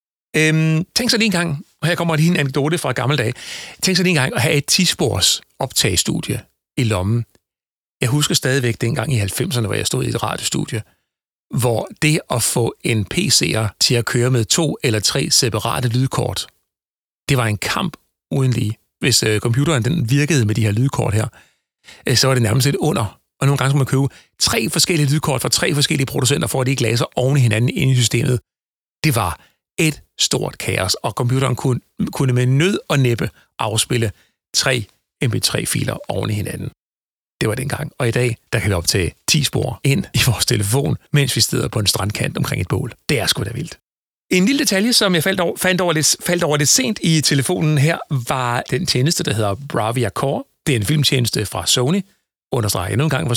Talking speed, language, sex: 210 wpm, Danish, male